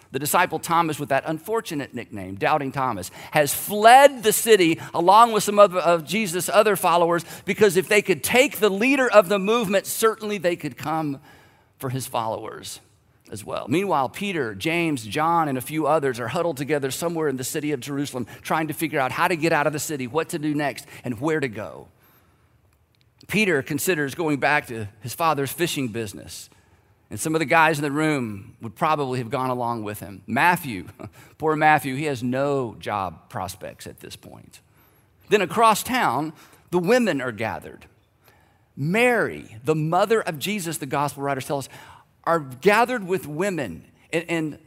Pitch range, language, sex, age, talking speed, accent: 130-180 Hz, English, male, 50-69, 180 wpm, American